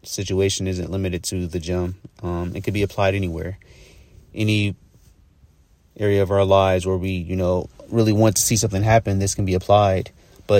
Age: 30-49